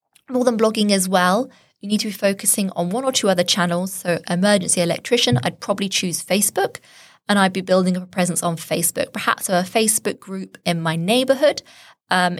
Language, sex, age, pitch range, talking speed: English, female, 20-39, 170-200 Hz, 195 wpm